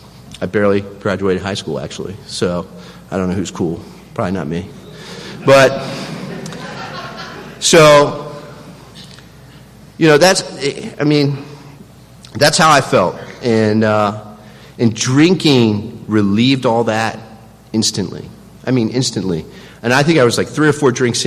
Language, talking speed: English, 135 wpm